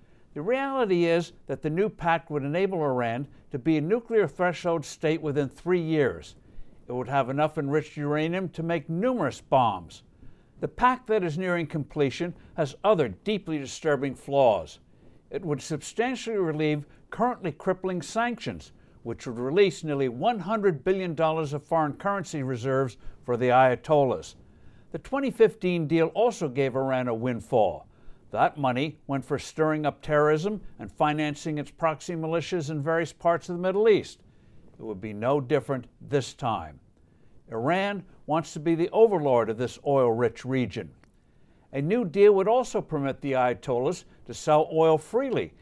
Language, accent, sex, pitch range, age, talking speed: English, American, male, 135-180 Hz, 60-79, 155 wpm